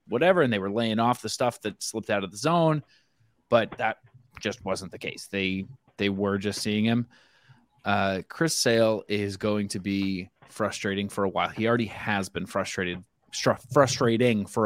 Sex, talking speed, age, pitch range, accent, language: male, 180 wpm, 20-39, 105-135 Hz, American, English